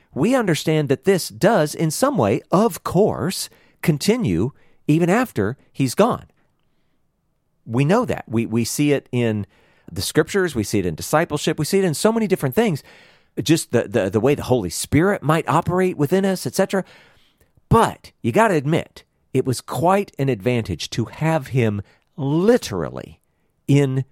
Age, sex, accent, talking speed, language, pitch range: 50-69, male, American, 160 wpm, English, 115-170 Hz